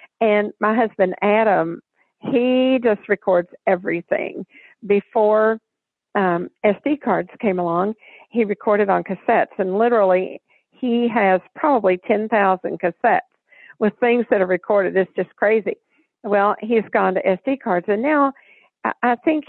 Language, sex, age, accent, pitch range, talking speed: English, female, 50-69, American, 195-245 Hz, 130 wpm